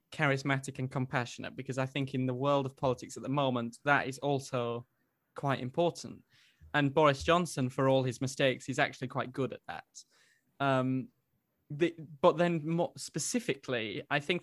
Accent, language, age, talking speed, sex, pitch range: British, English, 20-39, 165 wpm, male, 130-150 Hz